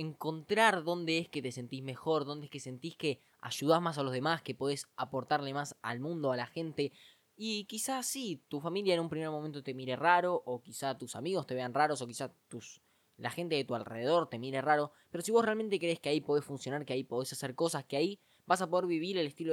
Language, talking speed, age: Spanish, 235 wpm, 10-29